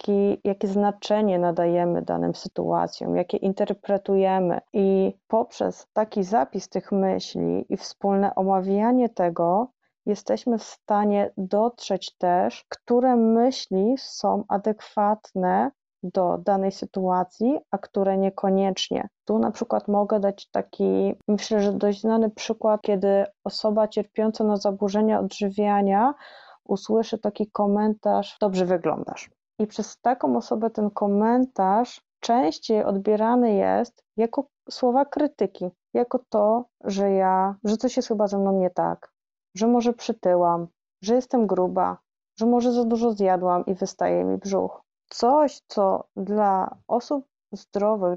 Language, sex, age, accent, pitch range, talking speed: Polish, female, 20-39, native, 195-230 Hz, 120 wpm